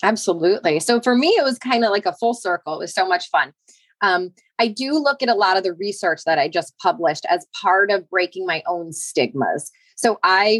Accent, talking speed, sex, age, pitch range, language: American, 225 wpm, female, 20-39, 185-245 Hz, English